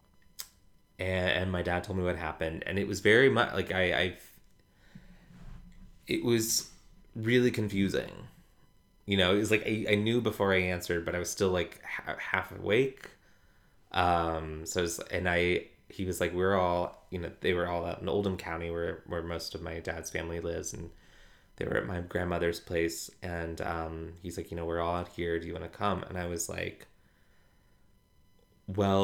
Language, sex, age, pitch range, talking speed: English, male, 20-39, 85-100 Hz, 190 wpm